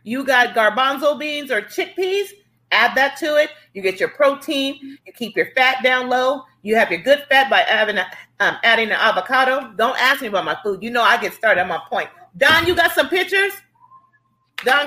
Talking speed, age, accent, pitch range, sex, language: 210 wpm, 40-59, American, 190-270 Hz, female, English